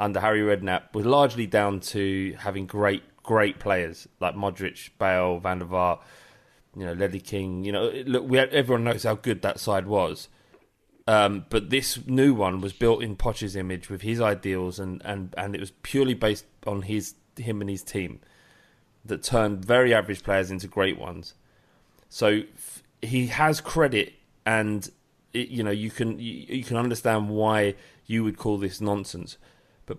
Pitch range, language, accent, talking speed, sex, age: 100-125 Hz, English, British, 175 wpm, male, 20-39